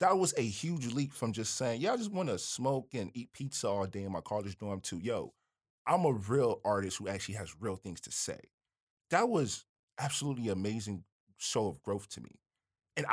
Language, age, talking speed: English, 20-39, 210 wpm